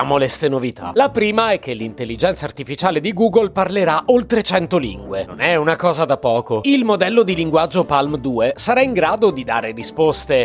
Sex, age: male, 30-49